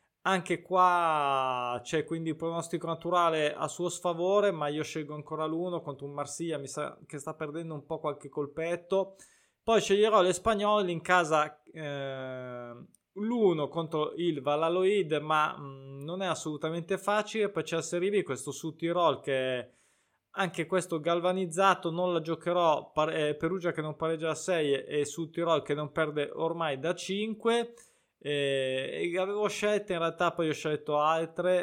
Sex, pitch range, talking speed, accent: male, 145-180 Hz, 155 wpm, native